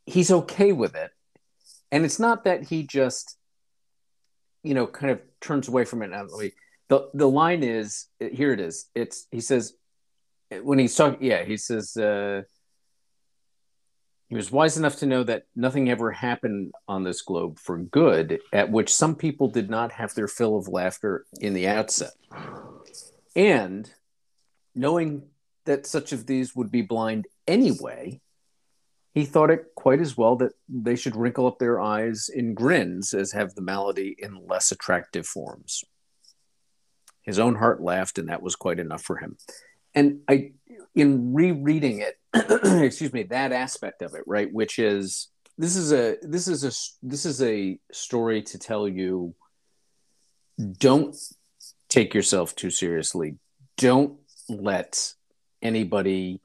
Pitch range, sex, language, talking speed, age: 105-145 Hz, male, English, 150 wpm, 50-69